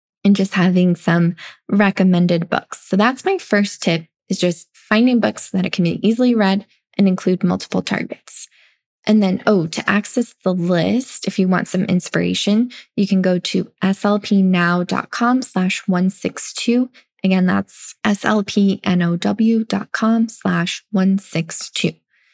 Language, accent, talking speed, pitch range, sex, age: English, American, 130 wpm, 185-215 Hz, female, 10-29